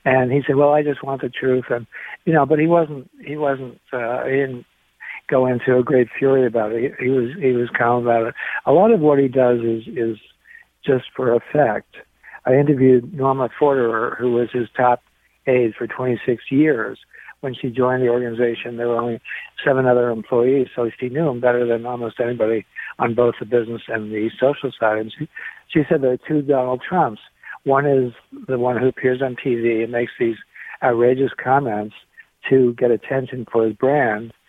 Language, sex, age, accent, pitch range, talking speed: English, male, 60-79, American, 115-135 Hz, 195 wpm